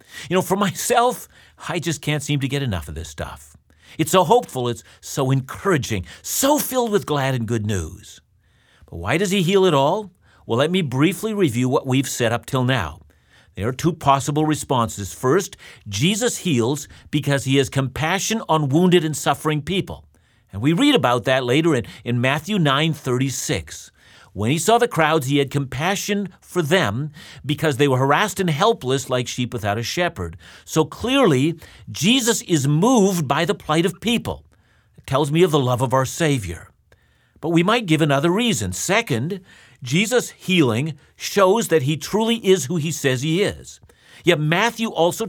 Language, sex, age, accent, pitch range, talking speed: English, male, 50-69, American, 120-175 Hz, 180 wpm